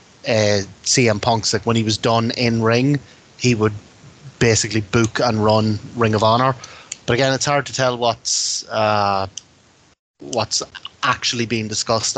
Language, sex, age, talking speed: English, male, 20-39, 155 wpm